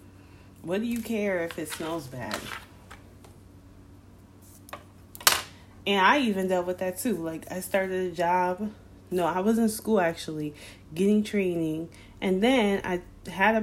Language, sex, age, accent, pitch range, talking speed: English, female, 20-39, American, 150-235 Hz, 145 wpm